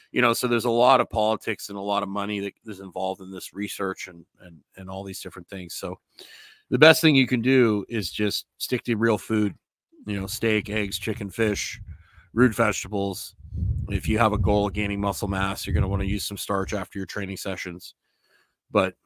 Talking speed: 215 wpm